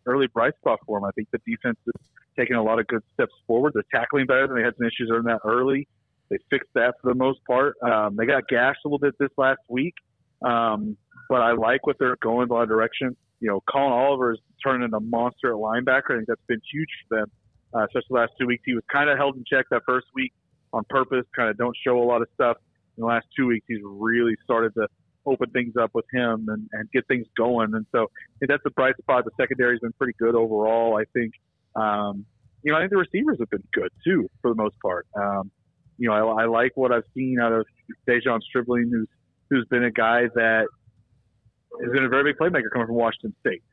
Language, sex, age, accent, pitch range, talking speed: English, male, 40-59, American, 110-130 Hz, 245 wpm